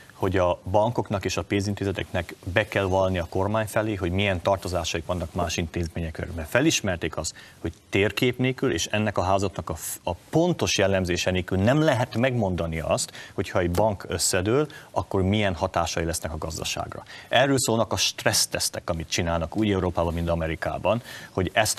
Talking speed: 155 wpm